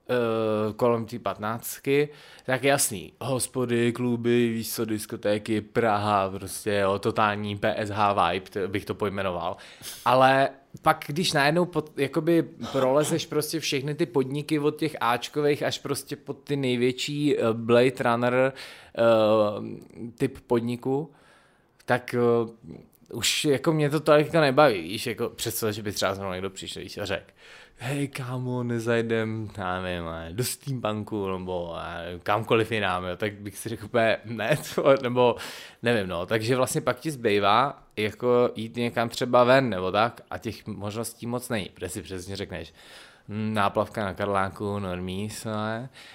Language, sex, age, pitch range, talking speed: Czech, male, 20-39, 105-130 Hz, 140 wpm